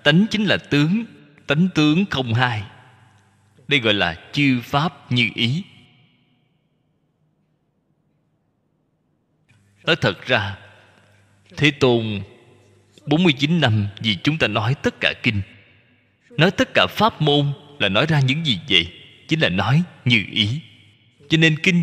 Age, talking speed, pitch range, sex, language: 20-39, 130 wpm, 110-160 Hz, male, Vietnamese